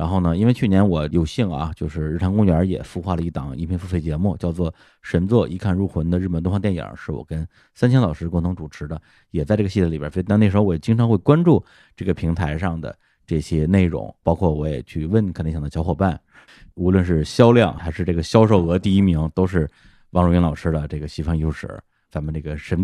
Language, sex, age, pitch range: Chinese, male, 20-39, 80-110 Hz